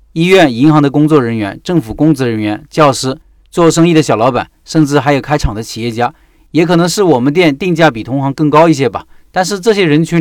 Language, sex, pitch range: Chinese, male, 120-165 Hz